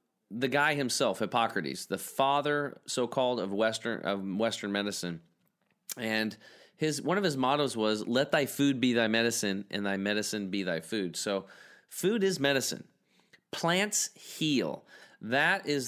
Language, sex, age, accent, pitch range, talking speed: English, male, 30-49, American, 105-125 Hz, 150 wpm